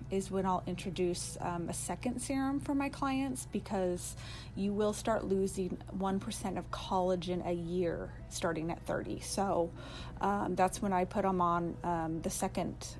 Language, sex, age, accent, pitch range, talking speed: English, female, 30-49, American, 180-205 Hz, 160 wpm